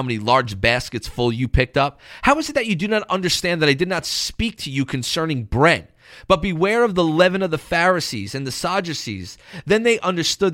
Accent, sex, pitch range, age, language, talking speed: American, male, 120-160 Hz, 30-49, English, 215 wpm